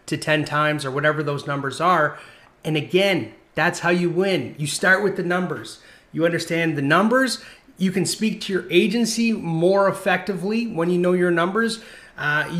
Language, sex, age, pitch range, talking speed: English, male, 30-49, 160-215 Hz, 175 wpm